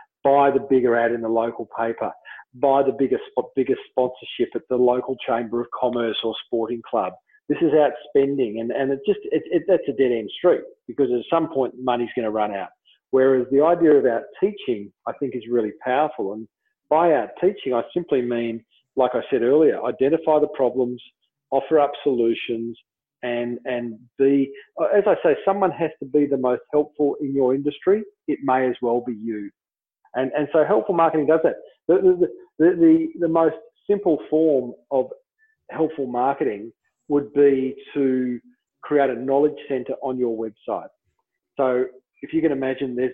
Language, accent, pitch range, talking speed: English, Australian, 125-160 Hz, 180 wpm